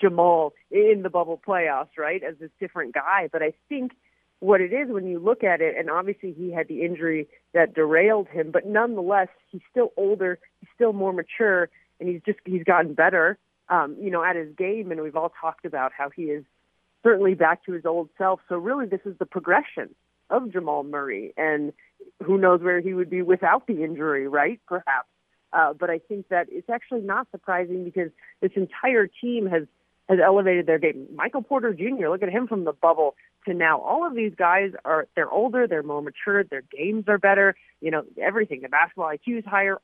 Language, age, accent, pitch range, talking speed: English, 40-59, American, 170-220 Hz, 205 wpm